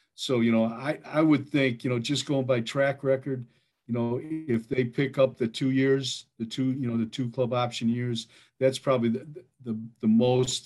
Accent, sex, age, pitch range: American, male, 50-69, 110-130 Hz